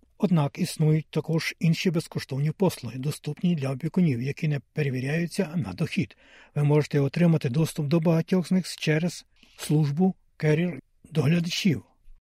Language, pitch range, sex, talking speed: Ukrainian, 145-170 Hz, male, 120 wpm